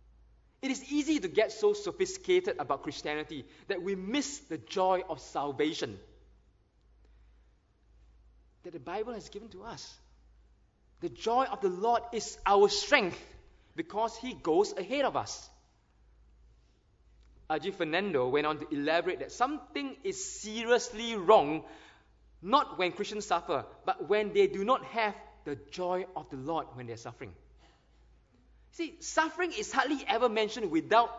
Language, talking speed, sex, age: English, 140 wpm, male, 20-39